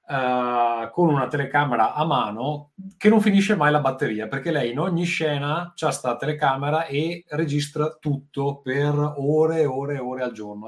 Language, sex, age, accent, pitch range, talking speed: Italian, male, 30-49, native, 115-150 Hz, 175 wpm